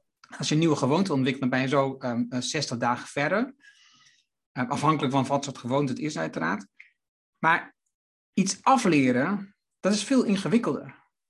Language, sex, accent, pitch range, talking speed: Dutch, male, Dutch, 140-205 Hz, 160 wpm